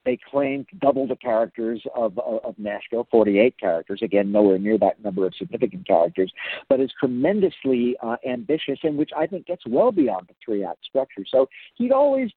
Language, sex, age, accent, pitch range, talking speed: English, male, 50-69, American, 125-180 Hz, 180 wpm